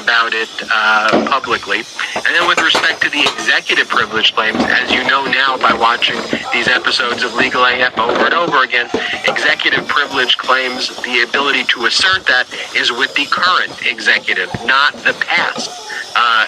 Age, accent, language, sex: 40-59, American, English, male